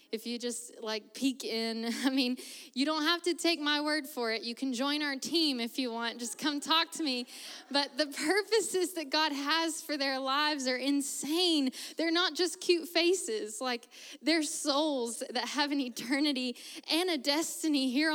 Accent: American